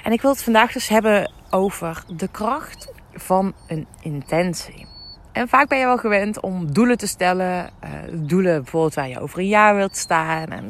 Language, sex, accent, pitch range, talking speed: Dutch, female, Dutch, 175-230 Hz, 185 wpm